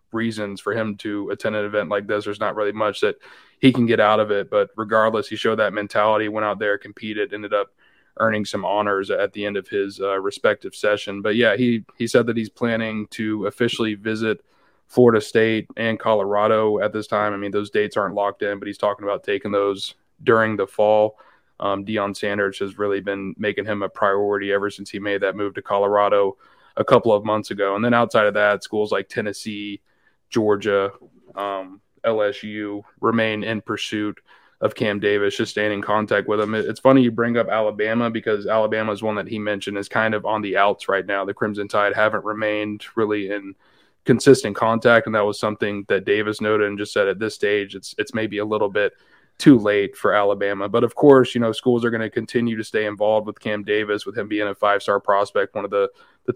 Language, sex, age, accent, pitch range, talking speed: English, male, 20-39, American, 100-110 Hz, 215 wpm